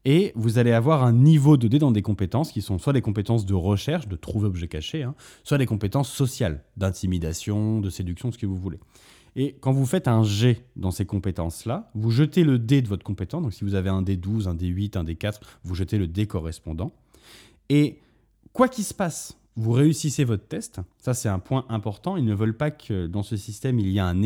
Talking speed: 225 wpm